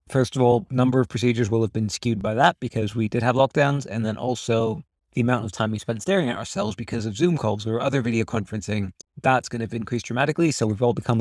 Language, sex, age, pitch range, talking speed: English, male, 20-39, 110-130 Hz, 250 wpm